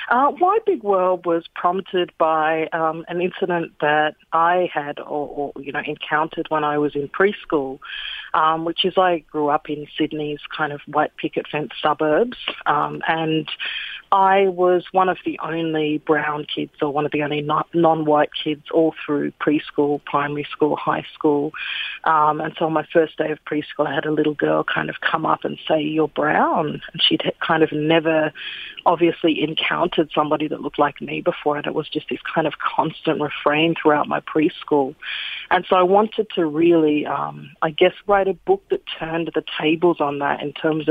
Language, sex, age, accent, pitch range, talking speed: English, female, 30-49, Australian, 150-175 Hz, 190 wpm